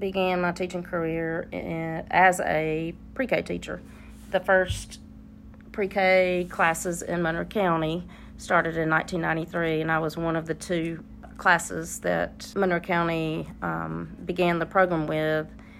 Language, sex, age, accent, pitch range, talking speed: English, female, 40-59, American, 155-190 Hz, 130 wpm